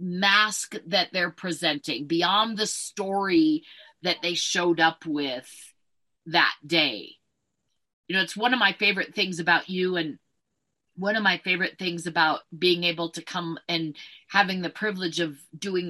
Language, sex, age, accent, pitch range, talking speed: English, female, 40-59, American, 165-195 Hz, 155 wpm